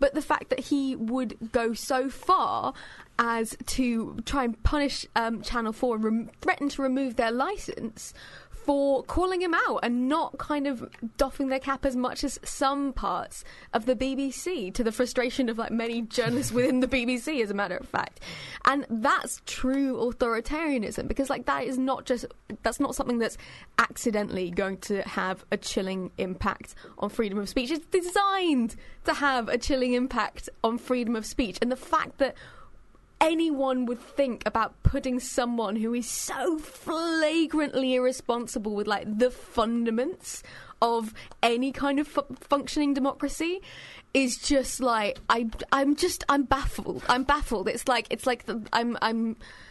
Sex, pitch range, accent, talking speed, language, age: female, 230-280 Hz, British, 165 wpm, English, 10-29